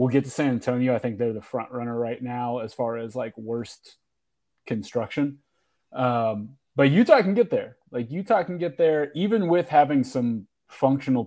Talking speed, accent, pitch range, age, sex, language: 185 wpm, American, 120-140 Hz, 30-49, male, English